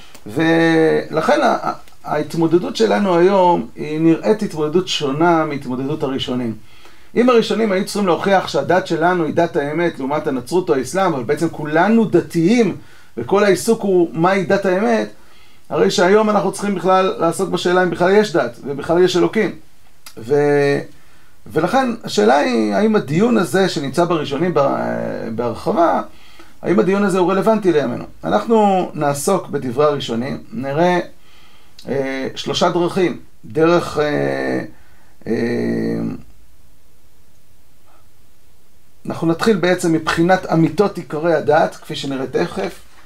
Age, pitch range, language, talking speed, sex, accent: 40-59, 150-190 Hz, Hebrew, 120 wpm, male, native